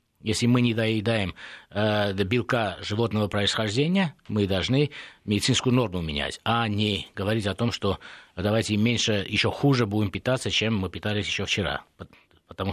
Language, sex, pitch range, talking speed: Russian, male, 100-130 Hz, 145 wpm